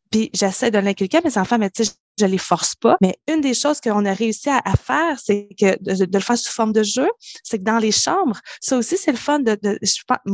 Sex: female